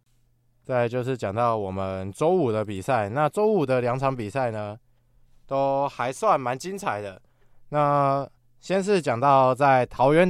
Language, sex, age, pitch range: Chinese, male, 20-39, 120-150 Hz